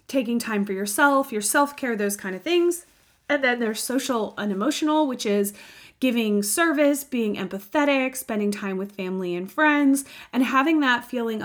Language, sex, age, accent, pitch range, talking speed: English, female, 30-49, American, 200-260 Hz, 170 wpm